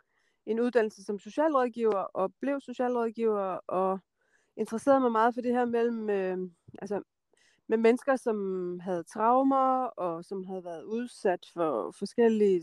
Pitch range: 195-240 Hz